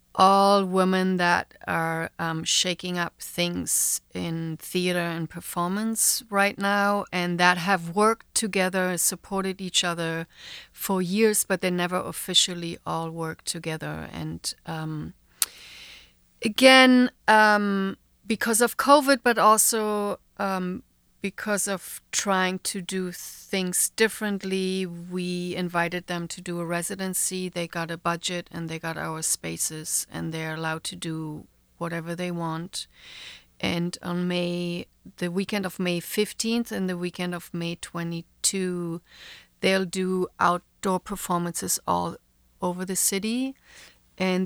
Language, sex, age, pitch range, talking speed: English, female, 40-59, 170-195 Hz, 130 wpm